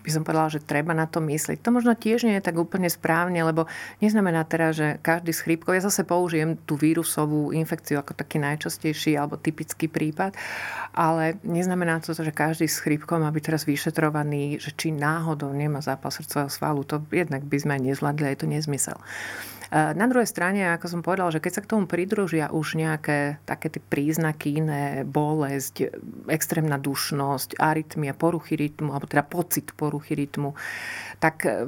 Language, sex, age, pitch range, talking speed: Slovak, female, 40-59, 145-170 Hz, 170 wpm